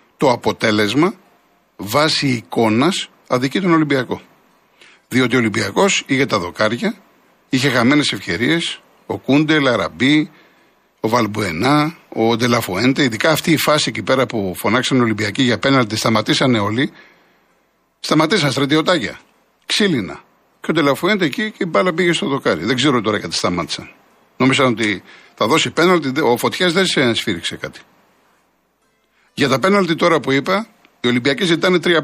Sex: male